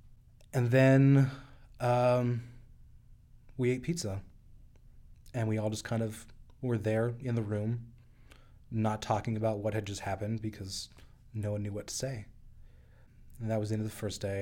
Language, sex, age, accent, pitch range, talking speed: English, male, 20-39, American, 105-120 Hz, 165 wpm